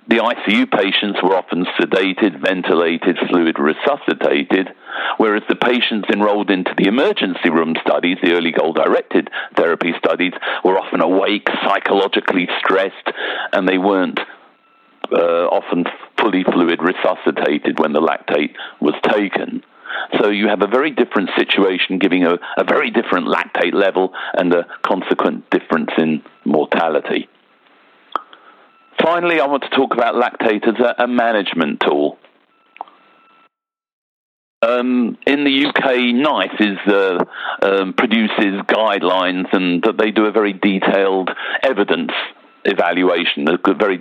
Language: English